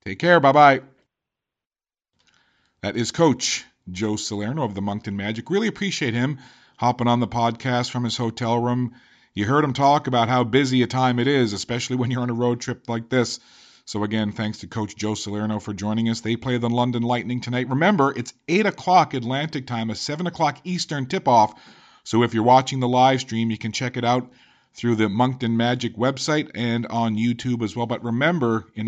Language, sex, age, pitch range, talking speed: English, male, 40-59, 115-140 Hz, 195 wpm